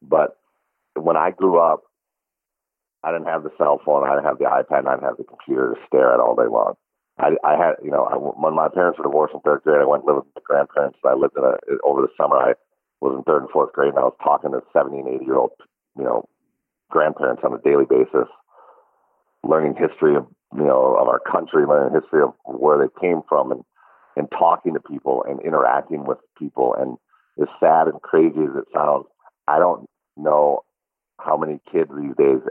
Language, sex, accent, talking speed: English, male, American, 220 wpm